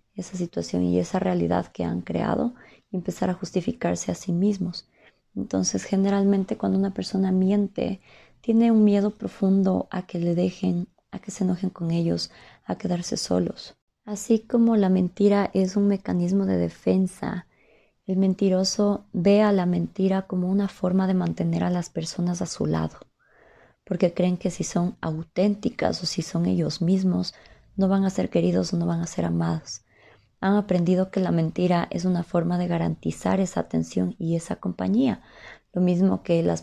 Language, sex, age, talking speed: Spanish, female, 20-39, 170 wpm